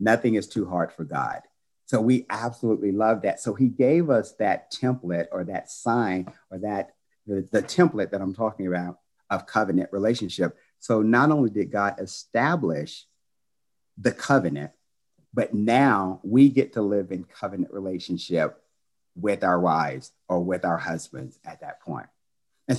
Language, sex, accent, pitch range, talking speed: English, male, American, 95-125 Hz, 160 wpm